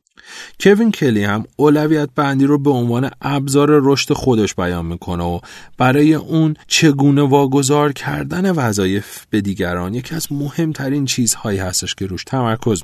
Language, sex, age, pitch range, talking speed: Persian, male, 40-59, 100-150 Hz, 140 wpm